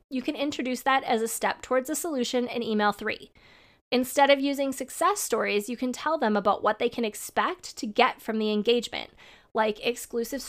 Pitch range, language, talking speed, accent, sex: 220-275 Hz, English, 195 wpm, American, female